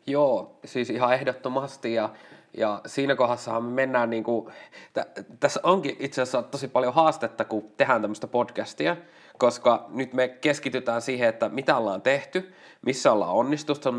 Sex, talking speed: male, 155 wpm